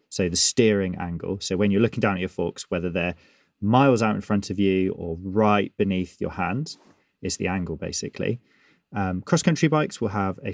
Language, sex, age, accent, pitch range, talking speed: English, male, 20-39, British, 95-115 Hz, 200 wpm